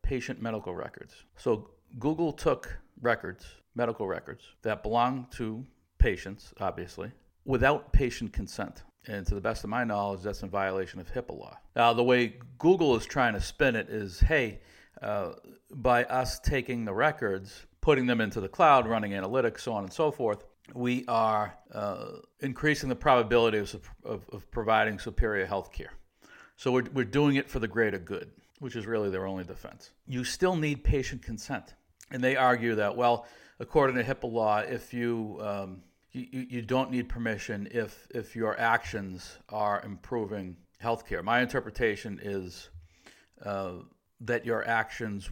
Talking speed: 165 wpm